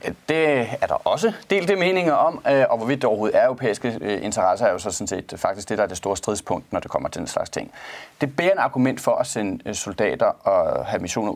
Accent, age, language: native, 30-49, Danish